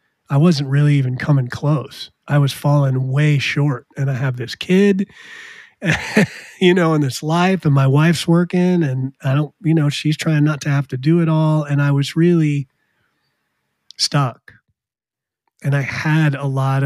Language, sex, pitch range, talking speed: English, male, 135-155 Hz, 175 wpm